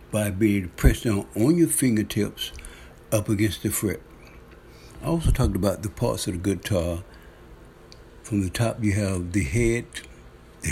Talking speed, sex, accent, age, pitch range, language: 160 wpm, male, American, 60-79, 95-115 Hz, English